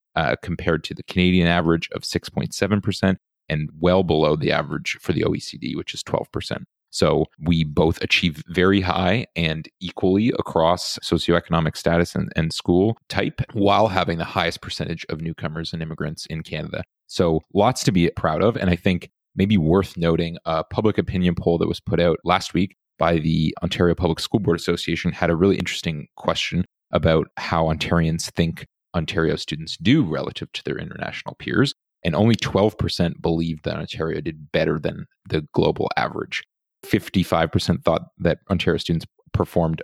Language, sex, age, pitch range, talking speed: English, male, 30-49, 80-95 Hz, 165 wpm